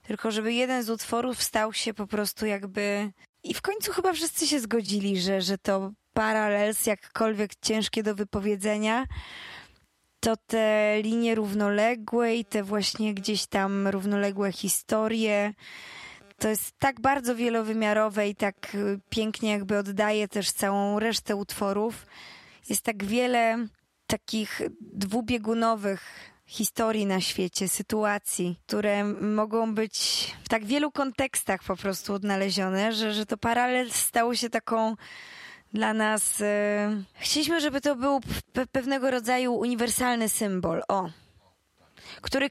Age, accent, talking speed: 20-39, native, 125 wpm